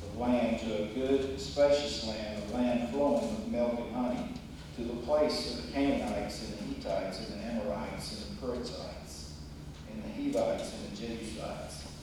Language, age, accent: English, 50-69, American